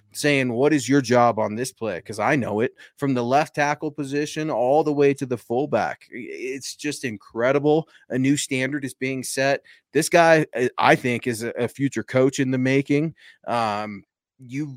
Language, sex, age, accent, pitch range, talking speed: English, male, 30-49, American, 115-145 Hz, 185 wpm